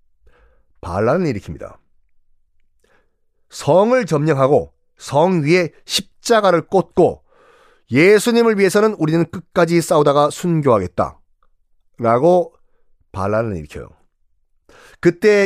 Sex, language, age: male, Korean, 40-59